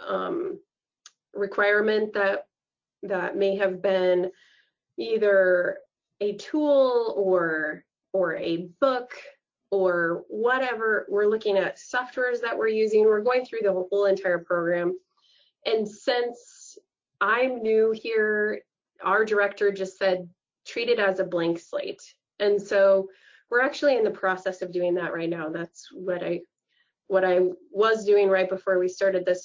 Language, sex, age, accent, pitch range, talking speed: English, female, 20-39, American, 185-220 Hz, 145 wpm